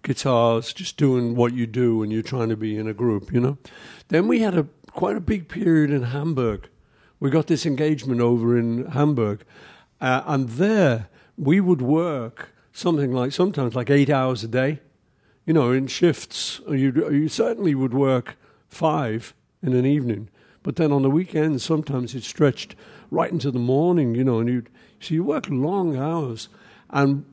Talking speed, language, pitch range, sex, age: 180 wpm, English, 120-155 Hz, male, 60-79